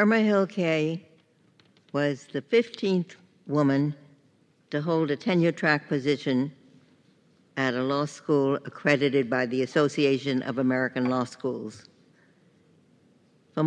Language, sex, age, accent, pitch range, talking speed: English, female, 60-79, American, 135-180 Hz, 110 wpm